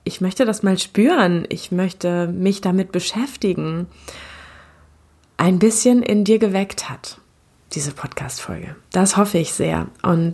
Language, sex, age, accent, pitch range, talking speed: German, female, 20-39, German, 180-220 Hz, 135 wpm